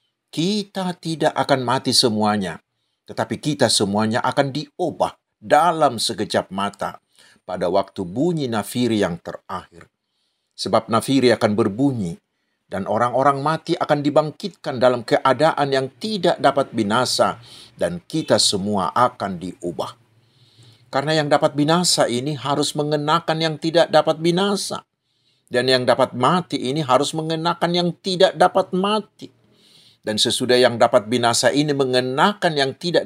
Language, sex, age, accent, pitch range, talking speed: Indonesian, male, 50-69, native, 120-170 Hz, 125 wpm